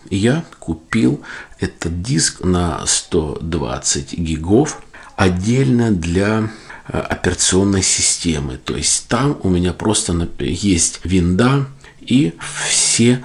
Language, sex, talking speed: Russian, male, 95 wpm